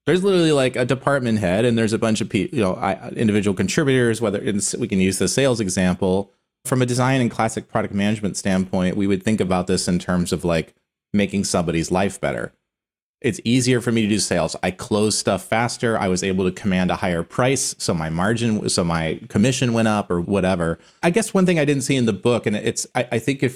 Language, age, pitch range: English, 30-49, 95-120 Hz